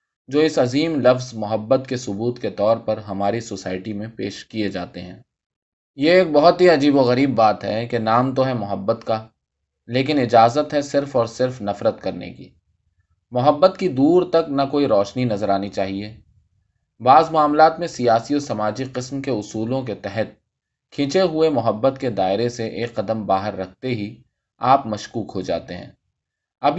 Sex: male